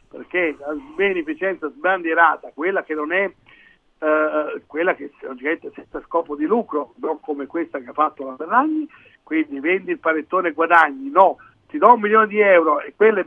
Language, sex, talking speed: Italian, male, 175 wpm